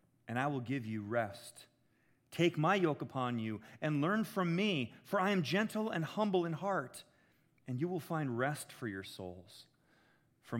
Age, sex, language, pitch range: 40-59, male, English, 130-195 Hz